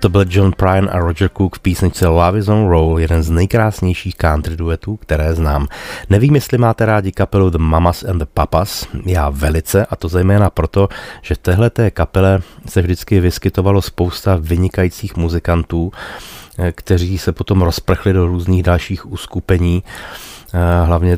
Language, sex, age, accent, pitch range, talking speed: Czech, male, 30-49, native, 85-100 Hz, 155 wpm